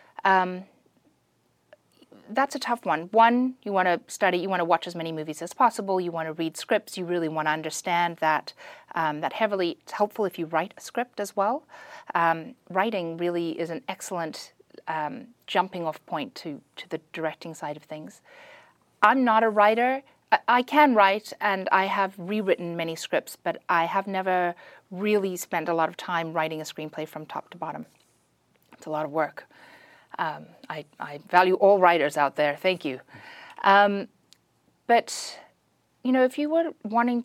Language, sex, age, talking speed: English, female, 30-49, 180 wpm